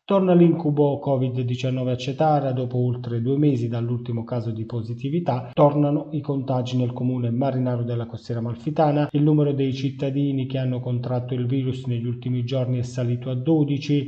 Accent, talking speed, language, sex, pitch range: native, 160 wpm, Italian, male, 125-150 Hz